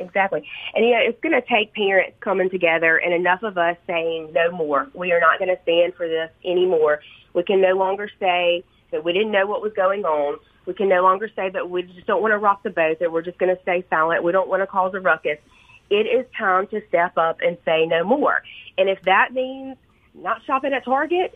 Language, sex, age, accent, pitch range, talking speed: English, female, 40-59, American, 185-260 Hz, 240 wpm